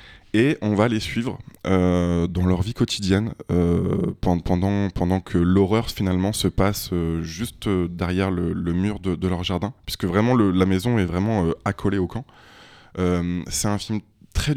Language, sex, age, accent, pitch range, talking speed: French, male, 20-39, French, 90-110 Hz, 180 wpm